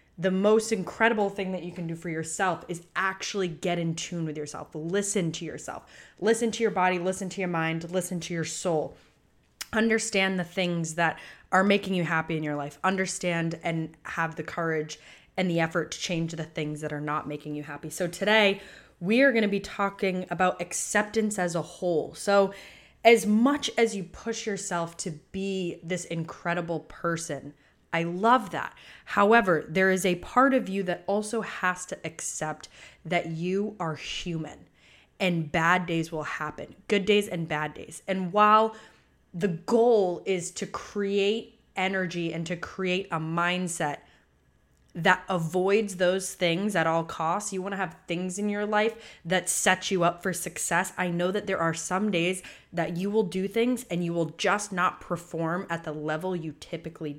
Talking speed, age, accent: 180 wpm, 20-39, American